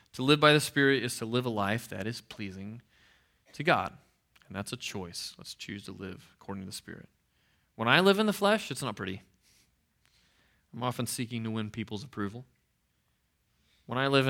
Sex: male